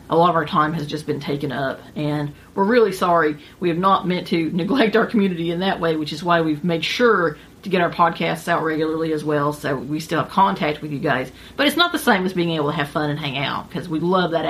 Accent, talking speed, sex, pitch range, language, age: American, 270 wpm, female, 155-215 Hz, English, 40-59